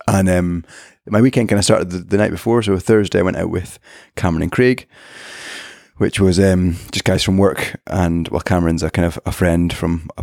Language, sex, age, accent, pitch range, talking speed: English, male, 30-49, British, 85-100 Hz, 215 wpm